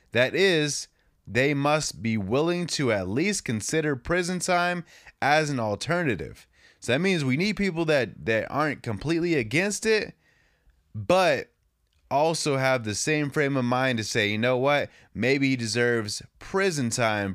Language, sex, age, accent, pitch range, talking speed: English, male, 20-39, American, 105-150 Hz, 155 wpm